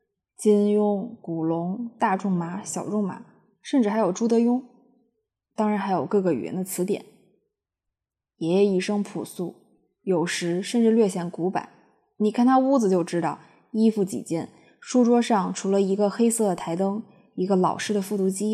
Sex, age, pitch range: female, 20-39, 185-225 Hz